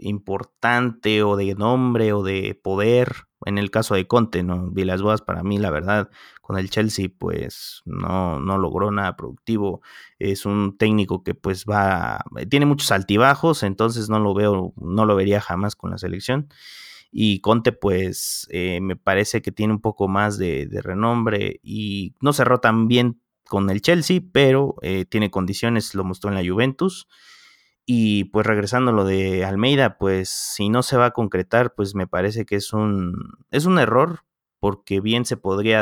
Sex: male